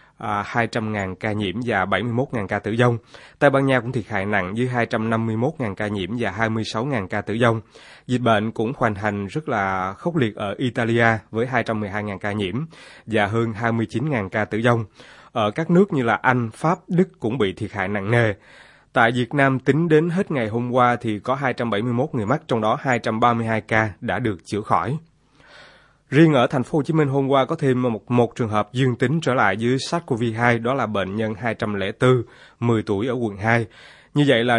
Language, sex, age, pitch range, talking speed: Vietnamese, male, 20-39, 110-135 Hz, 200 wpm